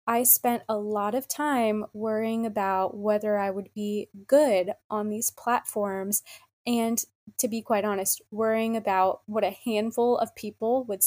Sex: female